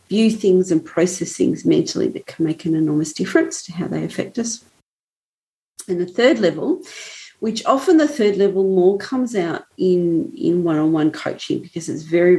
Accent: Australian